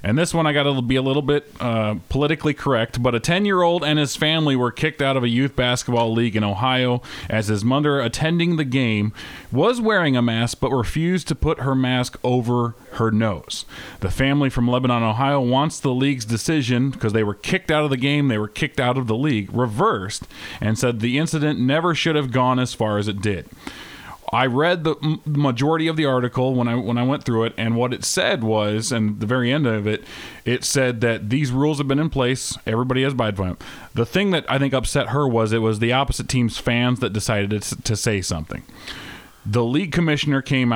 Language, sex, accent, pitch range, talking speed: English, male, American, 115-145 Hz, 215 wpm